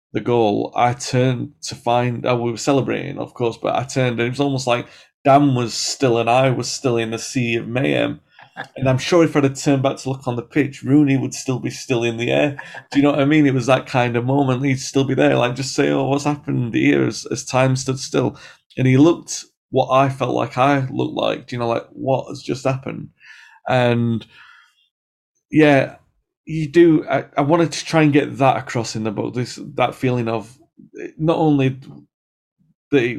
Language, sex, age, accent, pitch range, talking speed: English, male, 30-49, British, 120-140 Hz, 220 wpm